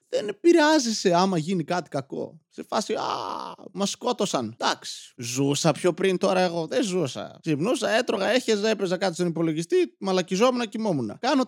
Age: 20-39